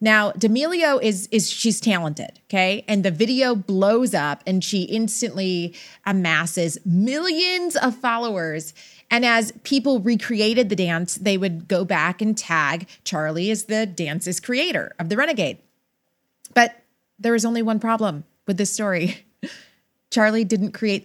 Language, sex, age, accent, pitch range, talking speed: English, female, 30-49, American, 180-230 Hz, 145 wpm